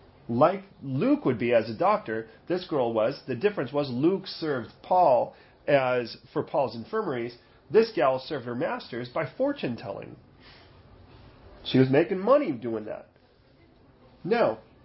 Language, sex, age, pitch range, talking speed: English, male, 40-59, 120-170 Hz, 140 wpm